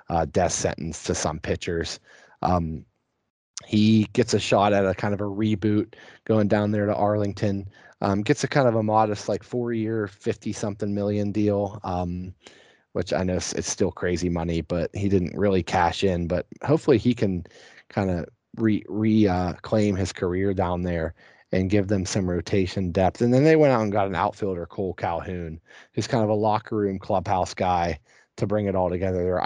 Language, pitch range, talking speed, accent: English, 90-105 Hz, 190 wpm, American